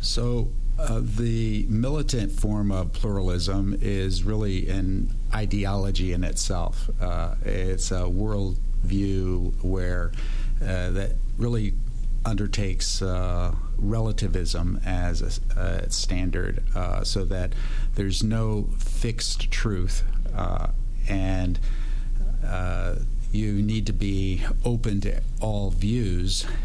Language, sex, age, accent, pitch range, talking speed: English, male, 50-69, American, 90-105 Hz, 95 wpm